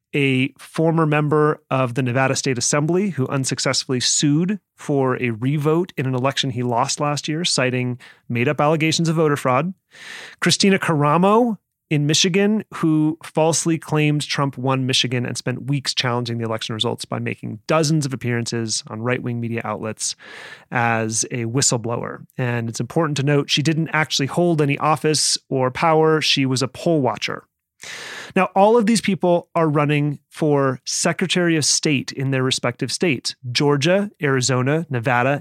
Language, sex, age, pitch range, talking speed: English, male, 30-49, 130-160 Hz, 155 wpm